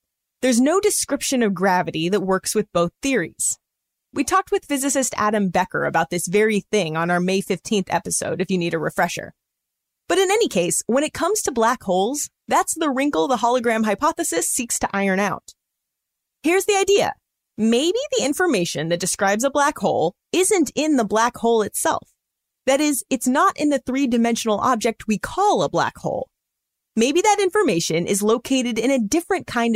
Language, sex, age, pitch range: English, female, 30-49, 200-285 Hz